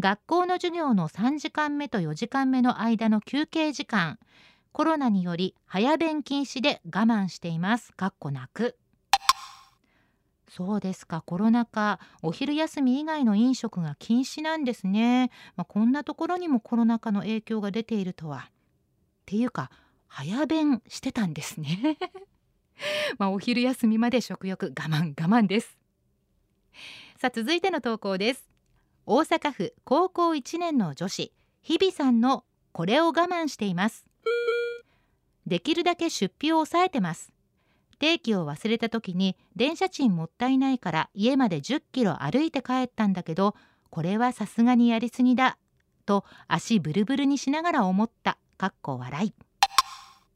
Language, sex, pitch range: Japanese, female, 195-295 Hz